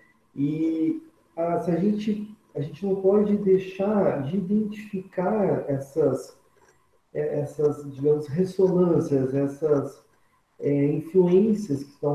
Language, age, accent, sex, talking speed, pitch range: Portuguese, 40-59, Brazilian, male, 105 wpm, 135-185 Hz